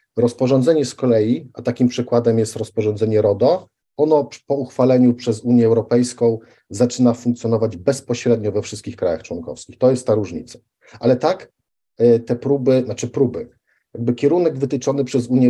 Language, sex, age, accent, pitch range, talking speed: Polish, male, 40-59, native, 115-135 Hz, 145 wpm